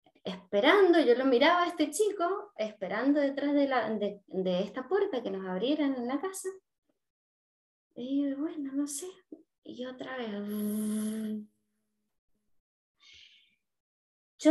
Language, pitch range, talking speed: Spanish, 225-335 Hz, 120 wpm